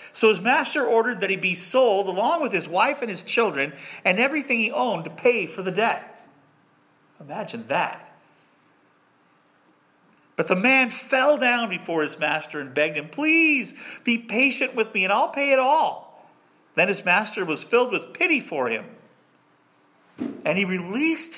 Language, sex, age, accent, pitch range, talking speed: English, male, 40-59, American, 190-285 Hz, 165 wpm